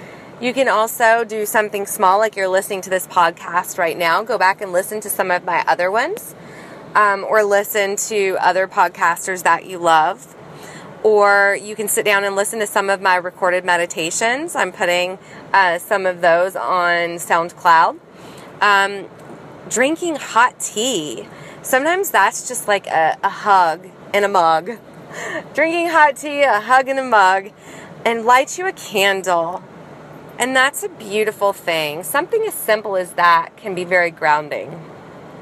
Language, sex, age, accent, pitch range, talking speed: English, female, 20-39, American, 175-215 Hz, 160 wpm